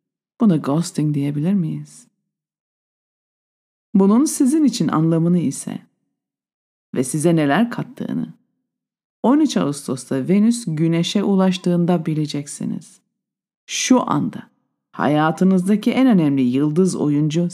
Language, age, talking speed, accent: Turkish, 50-69, 90 wpm, native